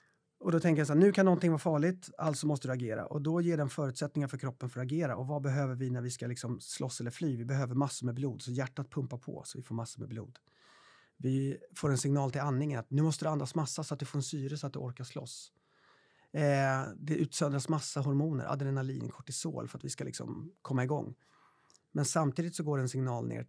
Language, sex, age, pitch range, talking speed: Swedish, male, 30-49, 130-165 Hz, 245 wpm